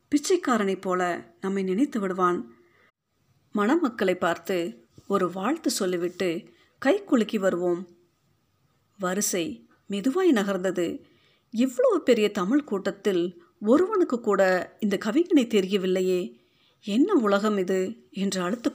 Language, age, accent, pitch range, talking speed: Tamil, 50-69, native, 180-250 Hz, 95 wpm